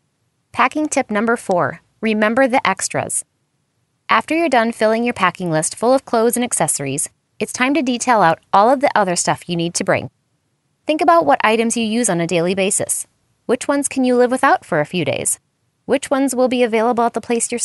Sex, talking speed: female, 210 wpm